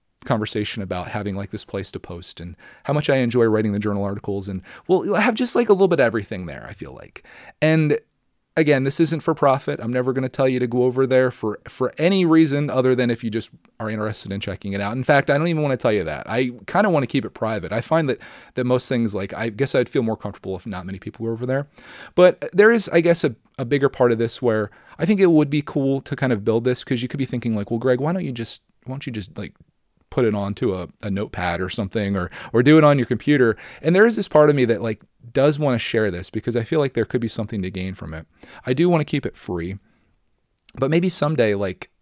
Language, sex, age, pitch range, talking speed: English, male, 30-49, 100-140 Hz, 275 wpm